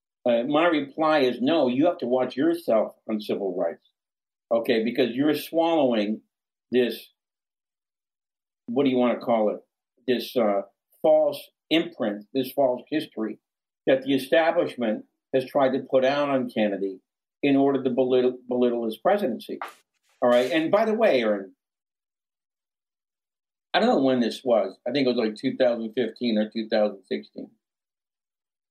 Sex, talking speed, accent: male, 145 wpm, American